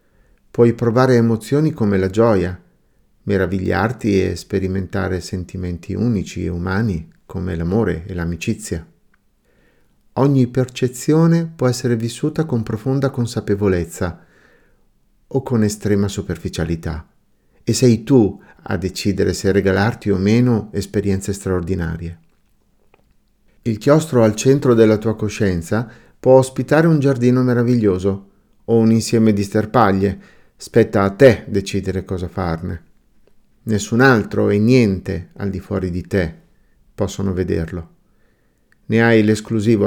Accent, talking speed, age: native, 115 wpm, 50-69